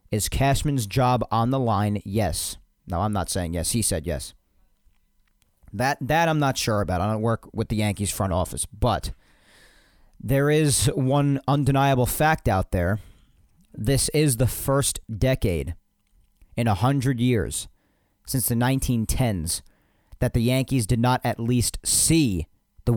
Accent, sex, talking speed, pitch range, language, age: American, male, 150 wpm, 100-135 Hz, English, 40-59